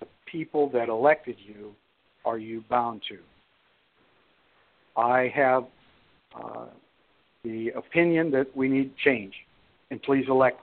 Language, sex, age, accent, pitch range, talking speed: English, male, 60-79, American, 125-165 Hz, 115 wpm